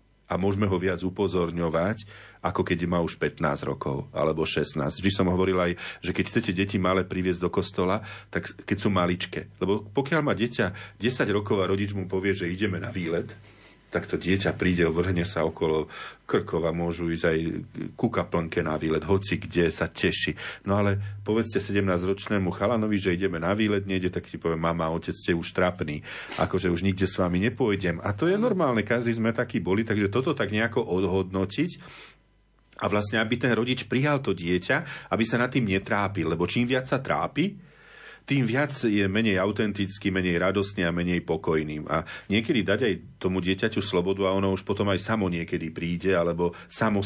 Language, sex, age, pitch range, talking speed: Slovak, male, 40-59, 90-105 Hz, 185 wpm